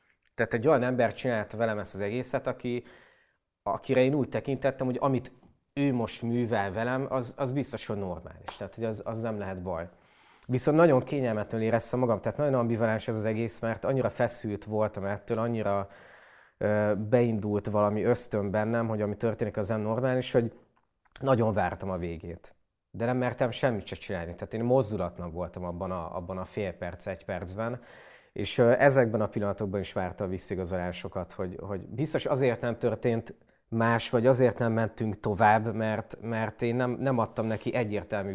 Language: Hungarian